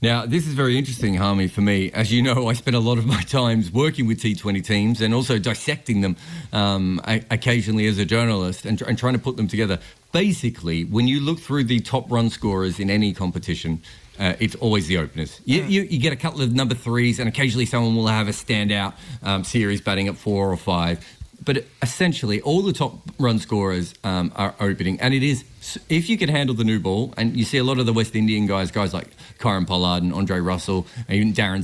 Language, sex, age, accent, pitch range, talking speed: English, male, 40-59, Australian, 100-135 Hz, 225 wpm